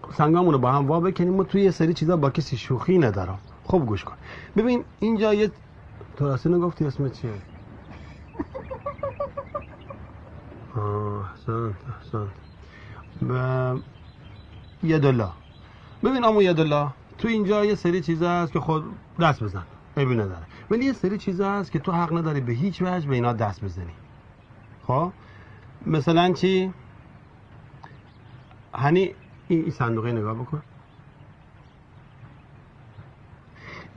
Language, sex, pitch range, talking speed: Persian, male, 110-170 Hz, 120 wpm